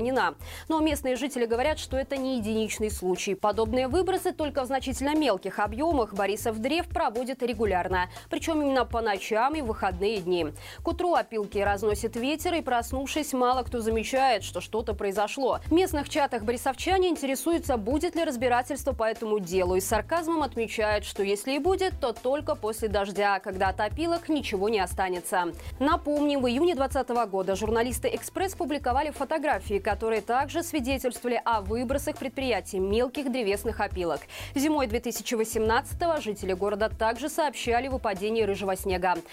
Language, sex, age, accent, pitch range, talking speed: Russian, female, 20-39, native, 210-280 Hz, 150 wpm